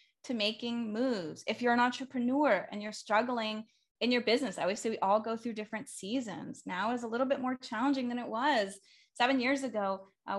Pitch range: 215-265 Hz